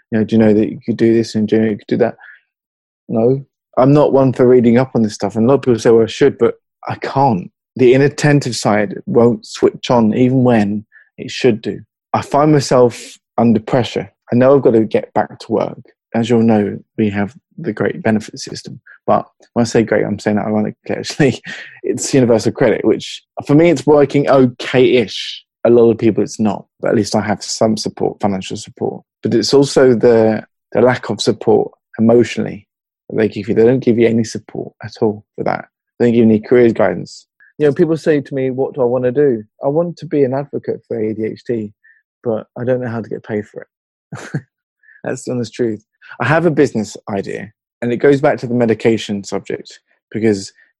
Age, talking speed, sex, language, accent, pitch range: 20-39, 220 wpm, male, English, British, 110-130 Hz